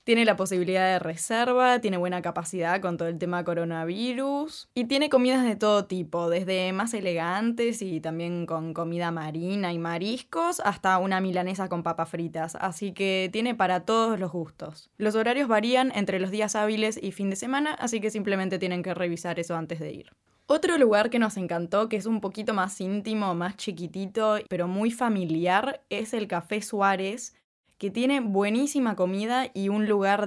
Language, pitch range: Spanish, 185-235 Hz